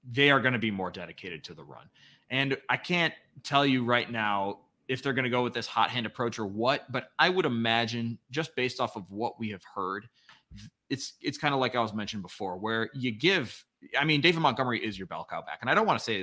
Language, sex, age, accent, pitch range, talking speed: English, male, 30-49, American, 115-155 Hz, 250 wpm